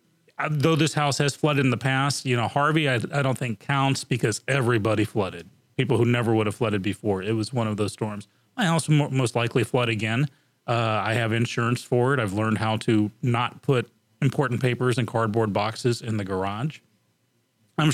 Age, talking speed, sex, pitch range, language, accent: 30-49, 205 wpm, male, 115-140 Hz, English, American